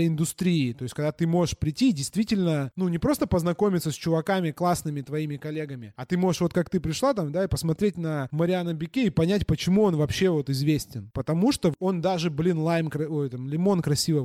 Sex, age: male, 20-39